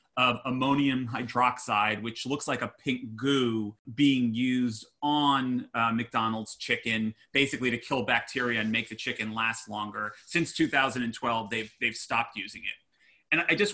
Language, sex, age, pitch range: English, male, 30-49, 115-145 Hz